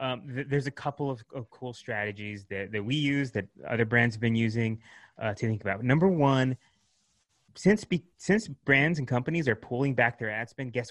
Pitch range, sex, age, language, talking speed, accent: 120-145 Hz, male, 20-39, English, 210 wpm, American